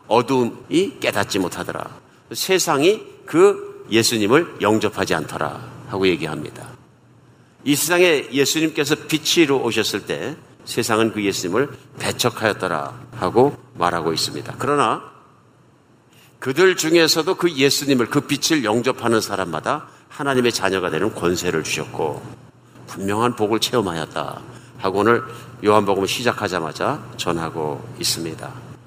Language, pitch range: Korean, 115-155 Hz